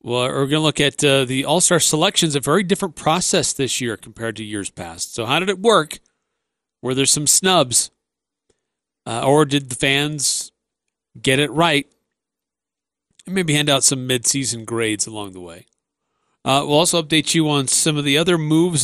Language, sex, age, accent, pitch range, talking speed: English, male, 40-59, American, 130-165 Hz, 180 wpm